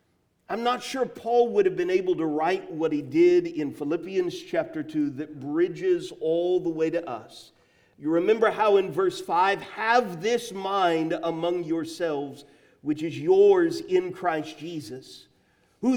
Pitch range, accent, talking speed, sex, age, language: 160-265 Hz, American, 160 wpm, male, 50-69, English